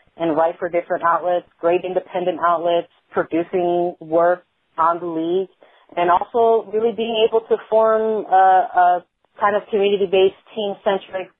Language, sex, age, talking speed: English, female, 30-49, 135 wpm